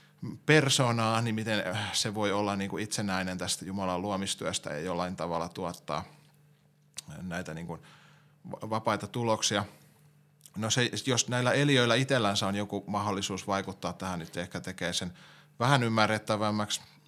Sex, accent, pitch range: male, native, 95-120 Hz